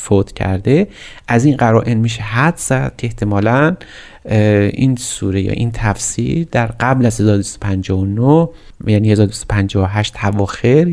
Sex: male